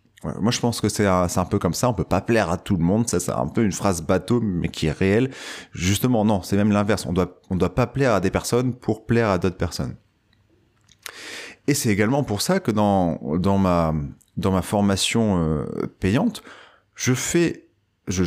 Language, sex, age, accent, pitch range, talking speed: French, male, 30-49, French, 90-115 Hz, 215 wpm